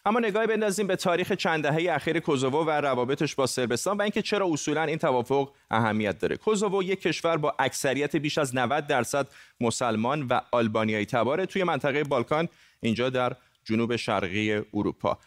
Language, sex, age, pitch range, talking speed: Persian, male, 30-49, 120-160 Hz, 165 wpm